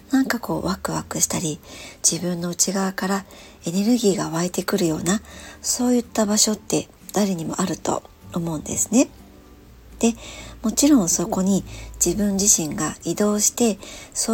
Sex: male